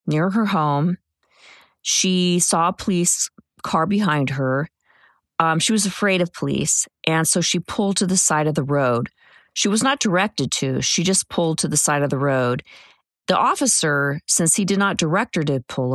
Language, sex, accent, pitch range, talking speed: English, female, American, 140-180 Hz, 190 wpm